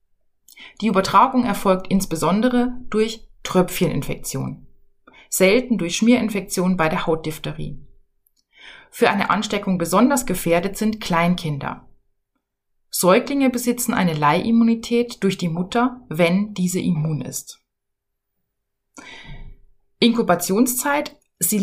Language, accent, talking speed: German, German, 90 wpm